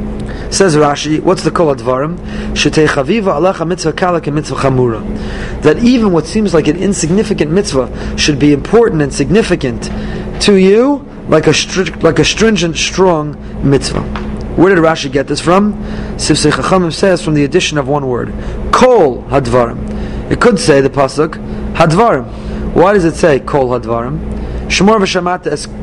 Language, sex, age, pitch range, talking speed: English, male, 30-49, 150-210 Hz, 160 wpm